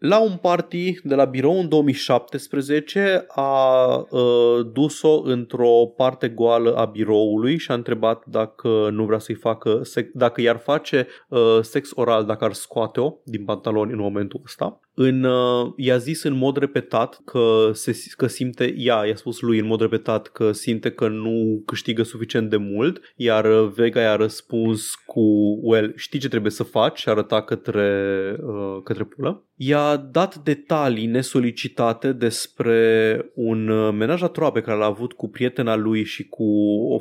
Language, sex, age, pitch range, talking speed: Romanian, male, 20-39, 110-130 Hz, 155 wpm